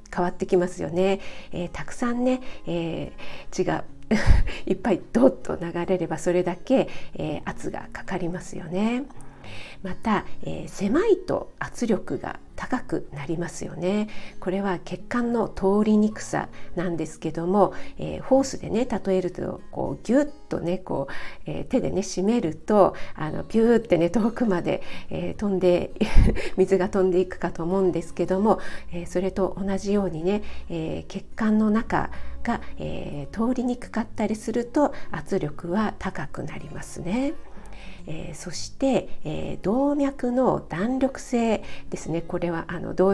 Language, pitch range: Japanese, 175-225 Hz